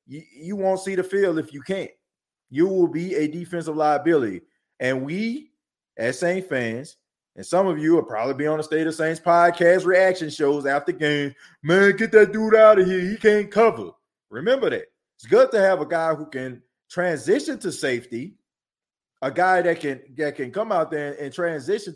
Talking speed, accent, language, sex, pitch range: 190 wpm, American, English, male, 145-190 Hz